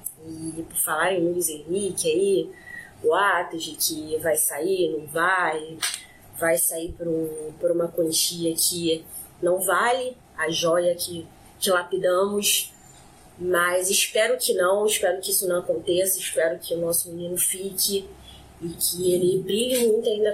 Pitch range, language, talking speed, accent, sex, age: 170-230 Hz, Portuguese, 145 wpm, Brazilian, female, 20-39